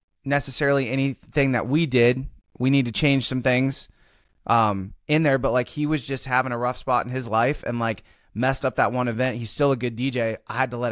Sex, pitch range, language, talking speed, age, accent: male, 115-140 Hz, English, 230 wpm, 20-39, American